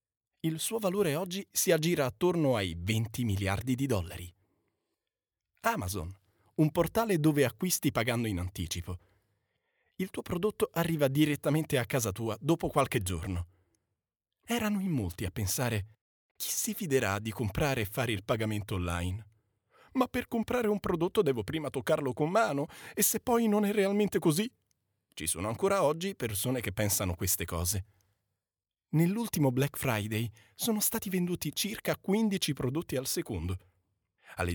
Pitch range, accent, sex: 100-160 Hz, native, male